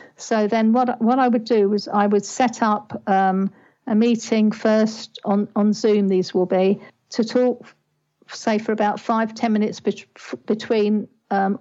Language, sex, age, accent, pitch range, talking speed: English, female, 50-69, British, 195-225 Hz, 175 wpm